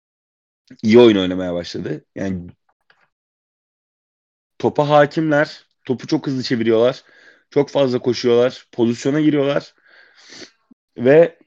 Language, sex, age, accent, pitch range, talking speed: Turkish, male, 30-49, native, 105-135 Hz, 90 wpm